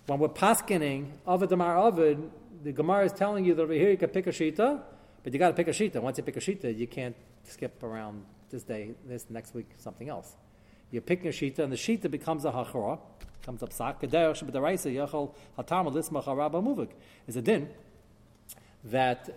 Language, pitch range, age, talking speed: English, 125-180 Hz, 40-59, 180 wpm